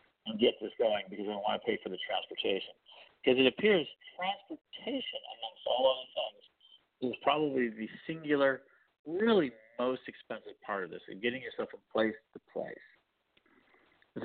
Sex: male